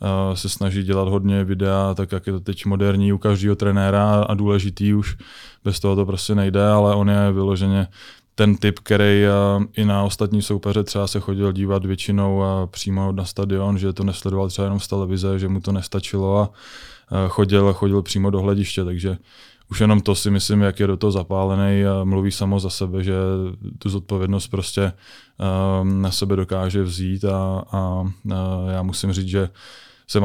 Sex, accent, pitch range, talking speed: male, native, 95-100 Hz, 175 wpm